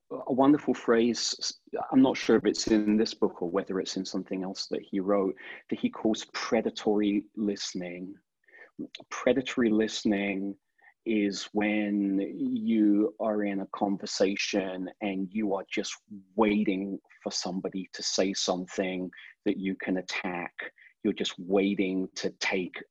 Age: 30-49